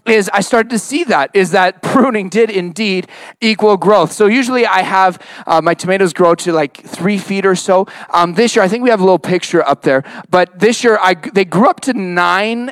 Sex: male